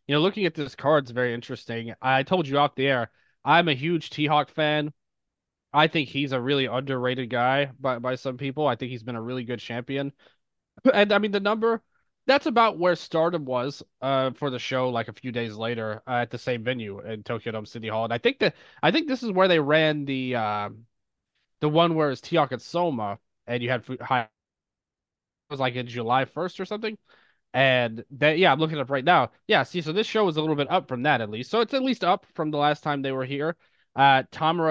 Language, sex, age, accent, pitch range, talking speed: English, male, 20-39, American, 125-150 Hz, 235 wpm